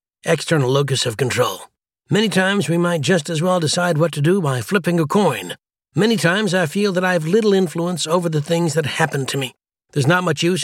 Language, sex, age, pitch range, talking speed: English, male, 60-79, 140-180 Hz, 220 wpm